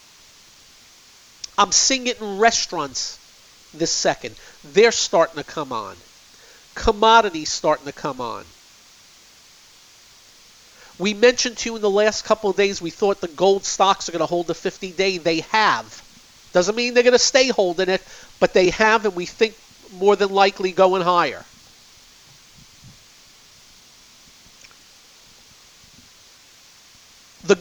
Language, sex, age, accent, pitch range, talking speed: English, male, 50-69, American, 145-200 Hz, 130 wpm